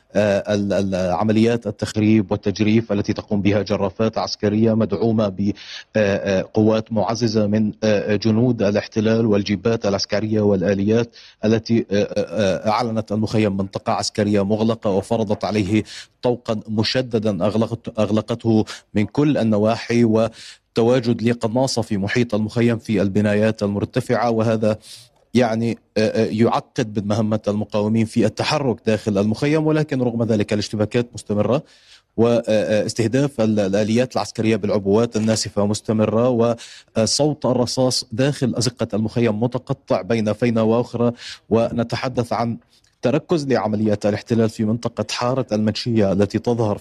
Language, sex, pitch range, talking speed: Arabic, male, 105-120 Hz, 100 wpm